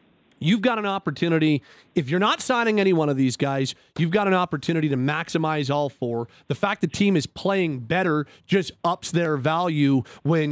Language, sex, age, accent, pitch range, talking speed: English, male, 40-59, American, 160-210 Hz, 190 wpm